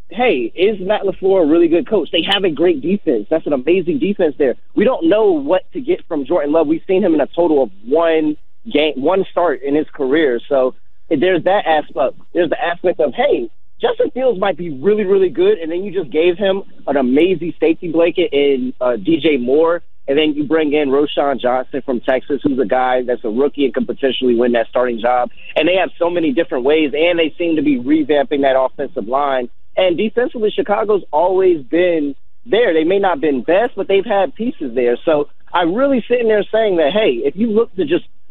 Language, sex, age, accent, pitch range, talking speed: English, male, 30-49, American, 140-205 Hz, 220 wpm